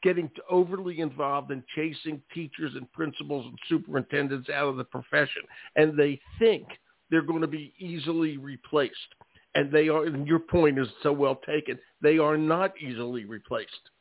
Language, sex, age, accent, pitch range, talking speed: English, male, 50-69, American, 135-160 Hz, 155 wpm